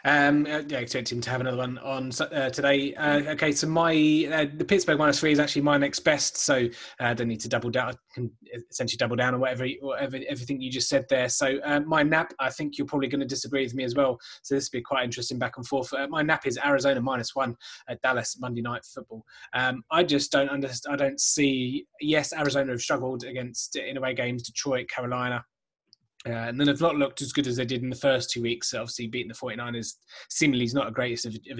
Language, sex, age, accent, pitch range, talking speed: English, male, 20-39, British, 120-140 Hz, 240 wpm